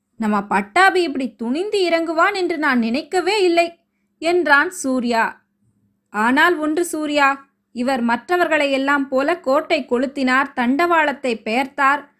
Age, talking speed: 20-39, 110 wpm